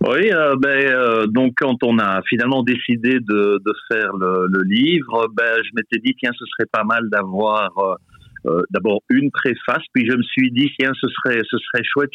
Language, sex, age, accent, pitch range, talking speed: French, male, 50-69, French, 100-125 Hz, 215 wpm